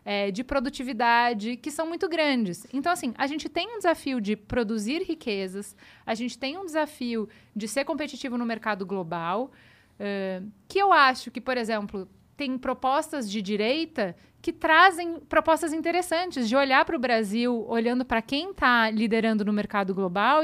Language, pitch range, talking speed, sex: Portuguese, 220-315 Hz, 160 wpm, female